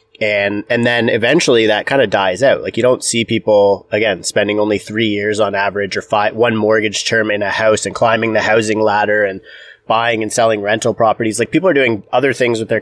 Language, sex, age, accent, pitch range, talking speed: English, male, 30-49, American, 105-125 Hz, 225 wpm